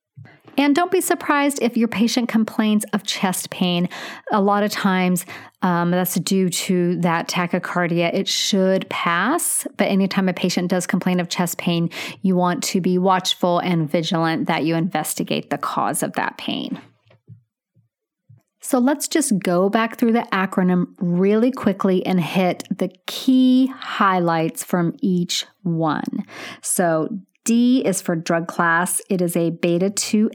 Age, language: 30-49, English